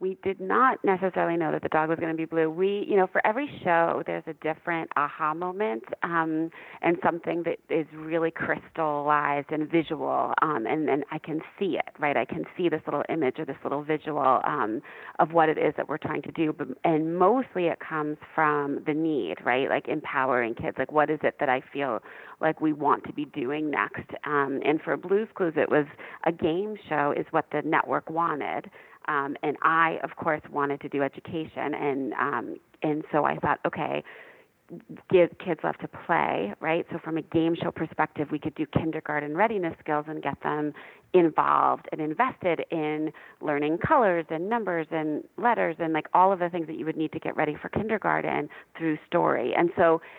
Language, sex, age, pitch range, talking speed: English, female, 40-59, 155-185 Hz, 200 wpm